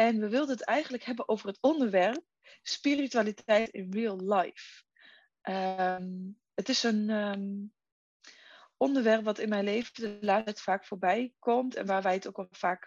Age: 20-39